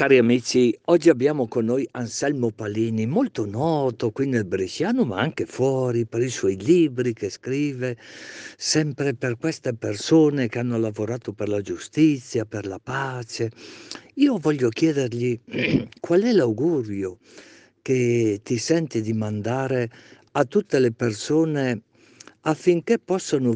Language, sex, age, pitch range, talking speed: Italian, male, 50-69, 115-140 Hz, 130 wpm